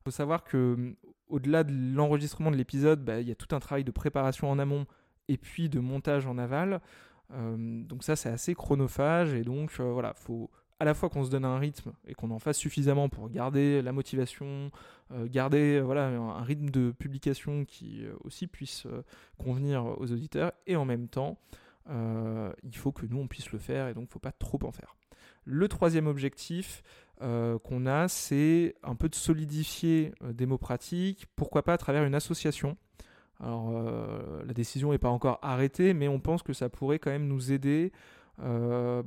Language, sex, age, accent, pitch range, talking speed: French, male, 20-39, French, 125-150 Hz, 195 wpm